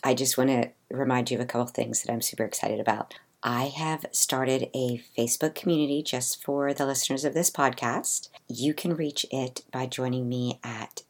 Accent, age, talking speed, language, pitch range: American, 50-69, 200 wpm, English, 130-160 Hz